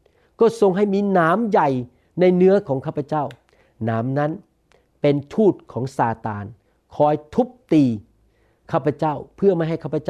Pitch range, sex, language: 130-185 Hz, male, Thai